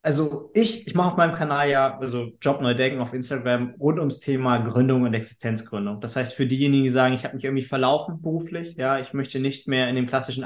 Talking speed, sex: 225 wpm, male